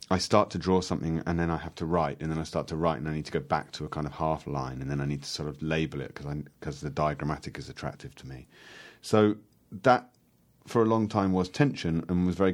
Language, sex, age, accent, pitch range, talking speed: English, male, 40-59, British, 75-90 Hz, 270 wpm